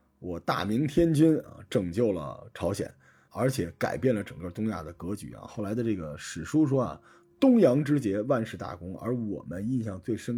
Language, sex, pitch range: Chinese, male, 95-125 Hz